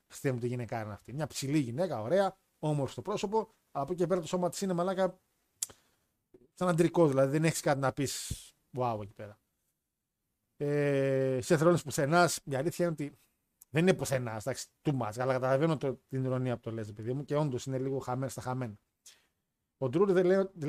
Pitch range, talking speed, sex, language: 130-175 Hz, 195 wpm, male, Greek